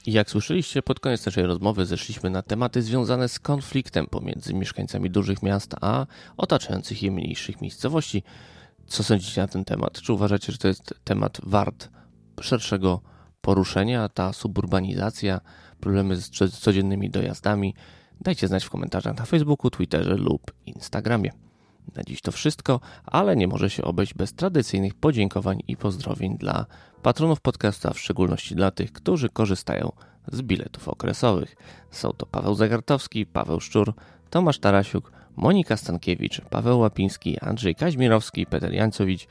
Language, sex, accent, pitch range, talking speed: Polish, male, native, 95-120 Hz, 140 wpm